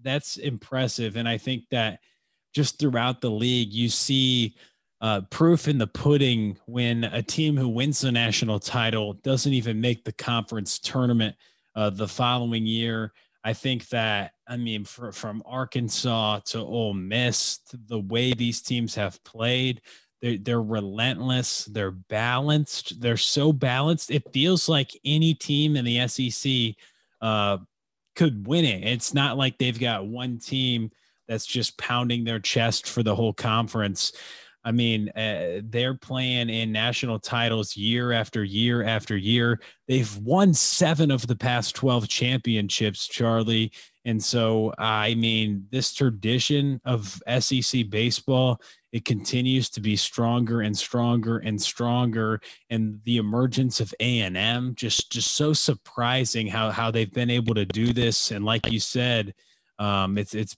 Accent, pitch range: American, 110-125 Hz